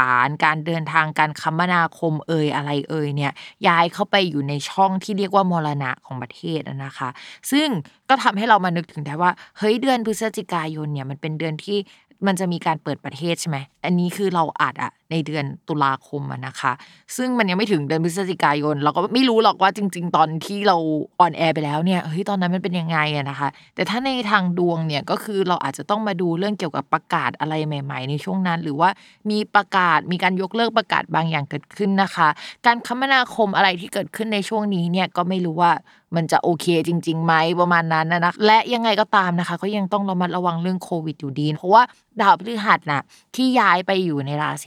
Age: 20-39